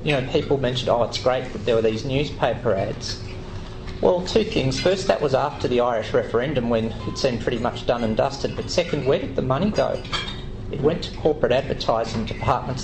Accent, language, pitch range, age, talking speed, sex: Australian, English, 110-135 Hz, 40-59, 205 wpm, male